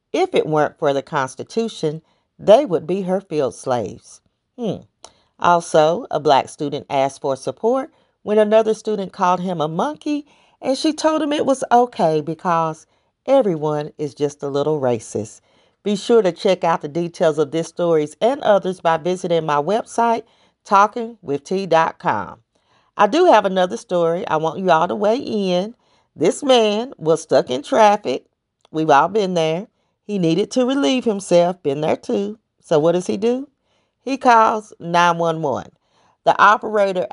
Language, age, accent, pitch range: English, 40-59, American, 160-220 Hz